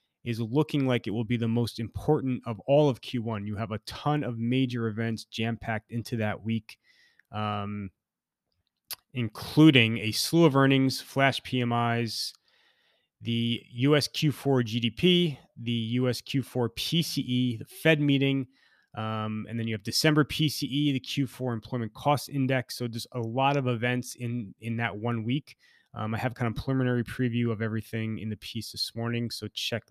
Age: 20-39